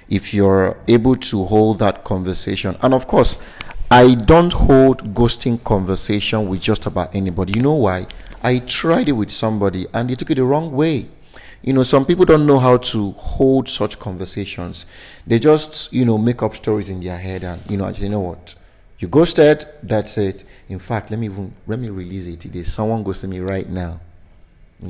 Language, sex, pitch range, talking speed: English, male, 95-125 Hz, 200 wpm